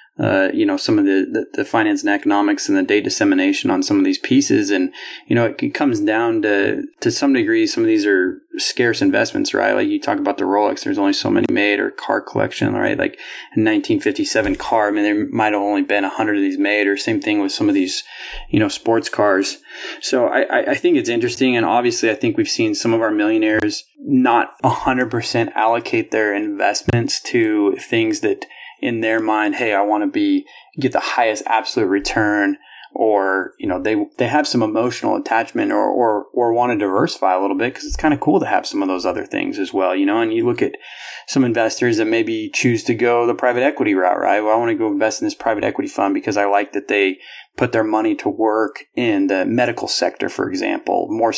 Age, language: 20-39, English